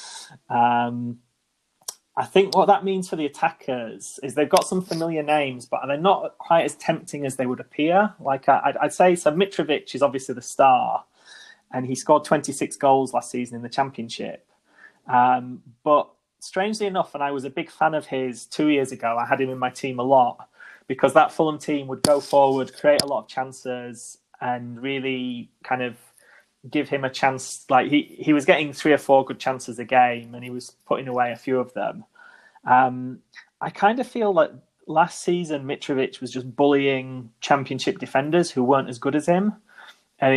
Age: 20-39